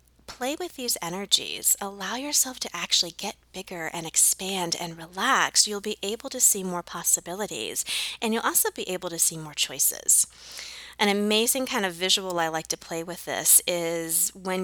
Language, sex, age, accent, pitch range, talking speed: English, female, 20-39, American, 170-230 Hz, 175 wpm